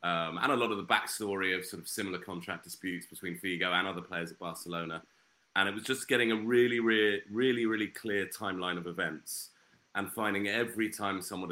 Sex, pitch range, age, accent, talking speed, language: male, 95-115 Hz, 30-49, British, 205 wpm, English